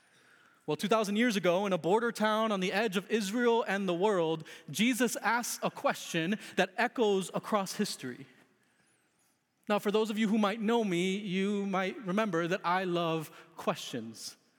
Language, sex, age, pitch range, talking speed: English, male, 30-49, 165-220 Hz, 165 wpm